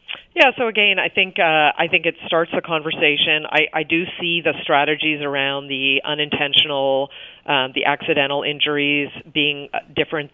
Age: 40-59